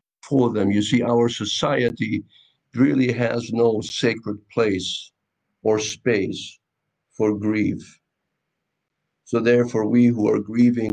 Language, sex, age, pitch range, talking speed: English, male, 50-69, 105-125 Hz, 115 wpm